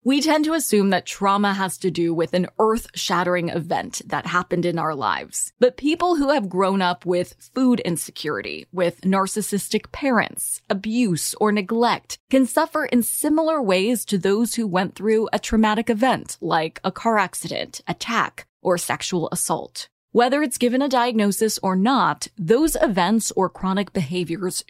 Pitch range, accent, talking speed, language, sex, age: 180-245 Hz, American, 160 wpm, English, female, 20-39